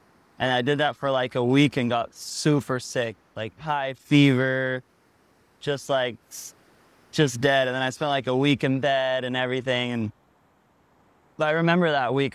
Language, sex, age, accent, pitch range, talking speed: English, male, 20-39, American, 120-140 Hz, 170 wpm